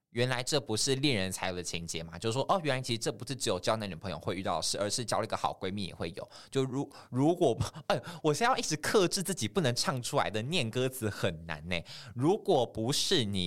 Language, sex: Chinese, male